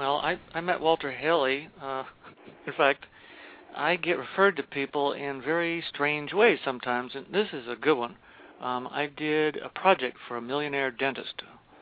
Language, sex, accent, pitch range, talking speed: English, male, American, 125-170 Hz, 175 wpm